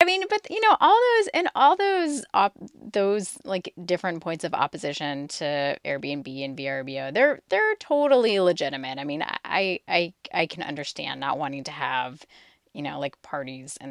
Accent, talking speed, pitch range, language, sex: American, 175 wpm, 145-195 Hz, English, female